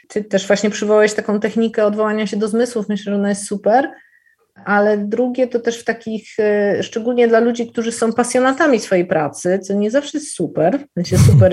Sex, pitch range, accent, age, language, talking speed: female, 190-230 Hz, native, 30-49, Polish, 185 wpm